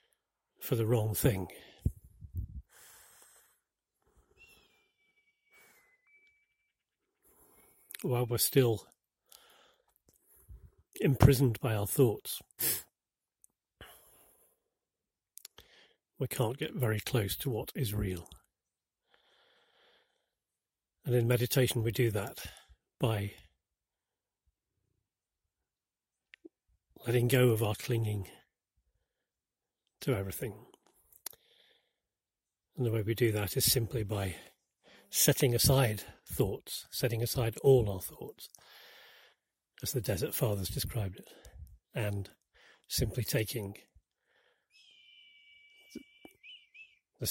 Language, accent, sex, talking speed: English, British, male, 75 wpm